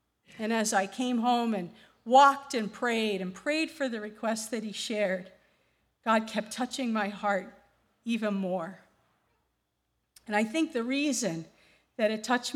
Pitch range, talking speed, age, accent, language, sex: 195-235 Hz, 155 wpm, 50-69, American, English, female